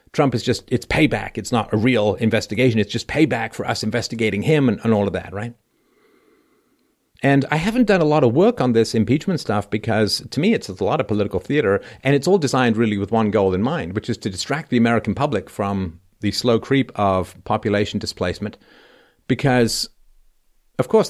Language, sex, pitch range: English, male, 95-120 Hz